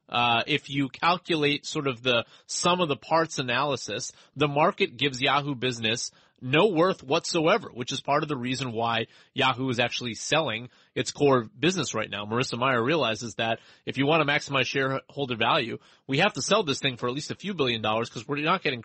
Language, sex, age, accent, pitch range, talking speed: English, male, 30-49, American, 115-145 Hz, 205 wpm